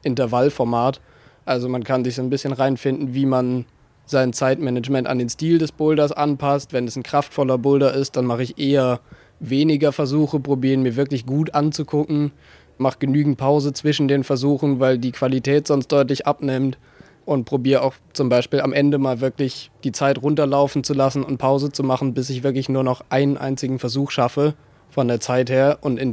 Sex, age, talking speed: male, 20-39, 185 wpm